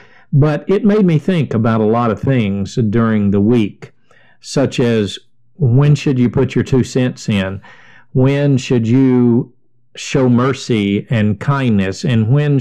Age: 50-69